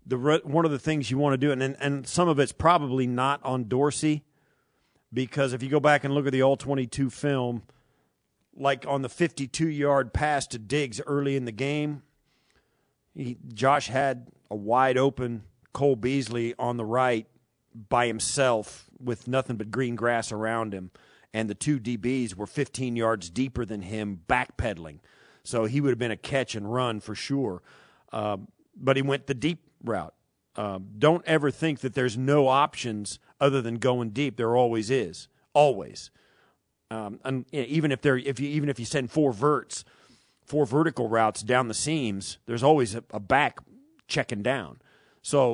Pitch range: 120-145 Hz